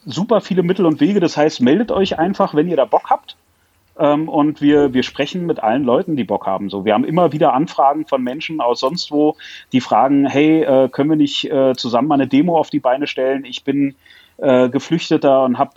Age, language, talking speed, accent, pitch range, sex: 30-49, German, 220 wpm, German, 130-165 Hz, male